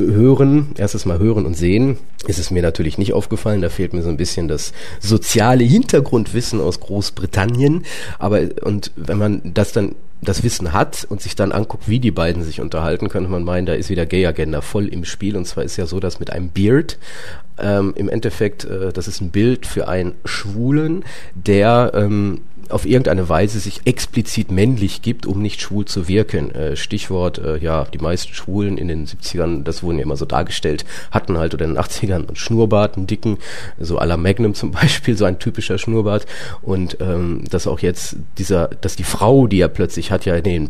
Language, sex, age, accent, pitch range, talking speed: German, male, 40-59, German, 85-105 Hz, 205 wpm